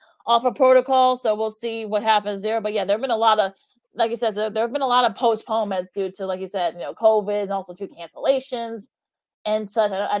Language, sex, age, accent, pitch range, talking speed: English, female, 20-39, American, 195-220 Hz, 245 wpm